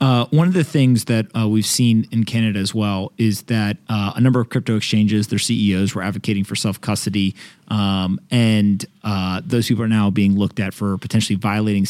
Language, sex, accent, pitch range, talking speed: English, male, American, 100-120 Hz, 200 wpm